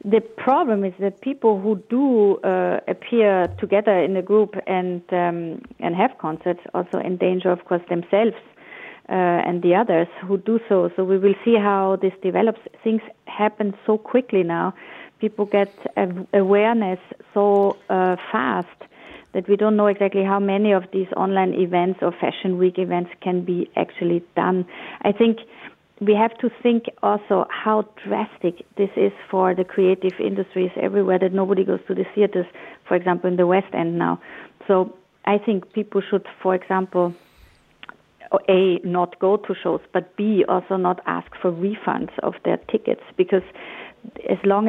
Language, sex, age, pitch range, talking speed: English, female, 30-49, 180-205 Hz, 165 wpm